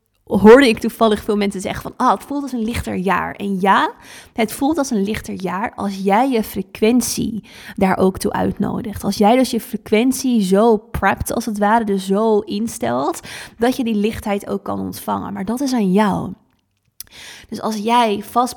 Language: Dutch